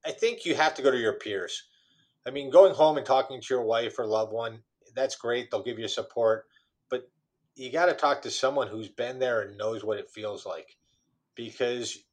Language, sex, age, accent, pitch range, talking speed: English, male, 30-49, American, 115-150 Hz, 220 wpm